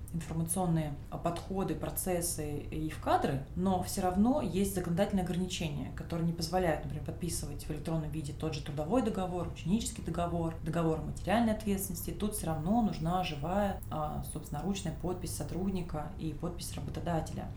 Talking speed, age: 145 wpm, 20-39